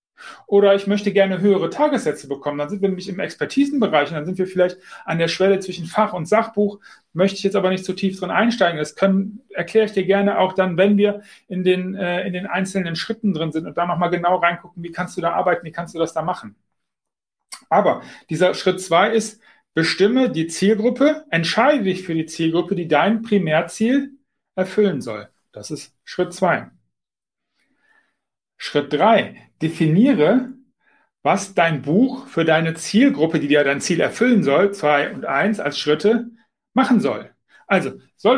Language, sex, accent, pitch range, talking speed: German, male, German, 170-215 Hz, 180 wpm